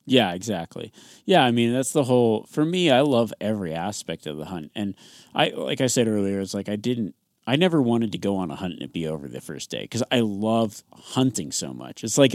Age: 30-49